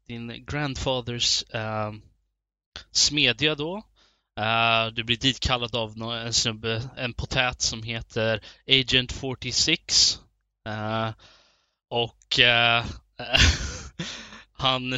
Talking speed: 80 wpm